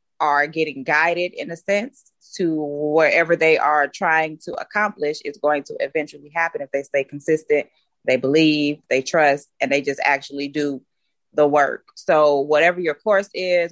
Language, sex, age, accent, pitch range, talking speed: English, female, 20-39, American, 140-160 Hz, 165 wpm